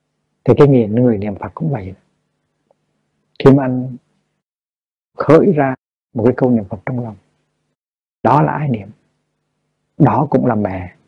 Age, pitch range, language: 60-79, 115-135 Hz, Vietnamese